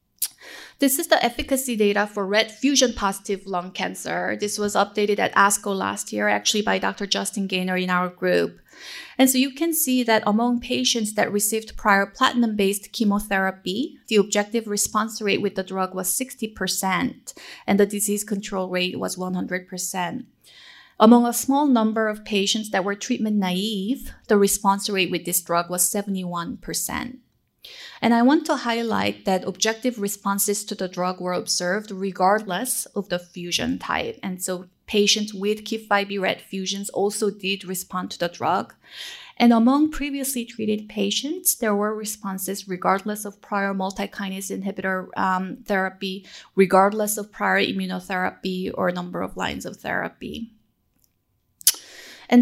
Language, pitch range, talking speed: English, 190-230 Hz, 150 wpm